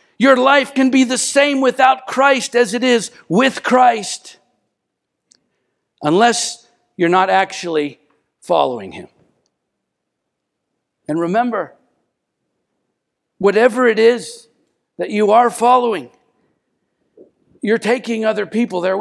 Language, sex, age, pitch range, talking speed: English, male, 50-69, 190-240 Hz, 105 wpm